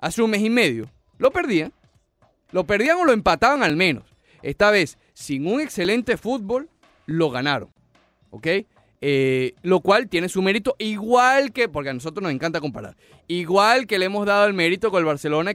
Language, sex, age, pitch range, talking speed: Spanish, male, 30-49, 140-200 Hz, 180 wpm